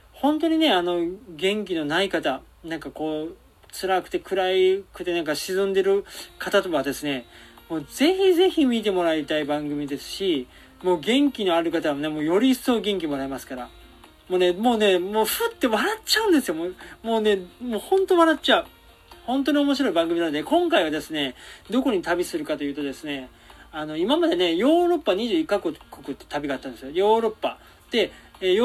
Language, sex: Japanese, male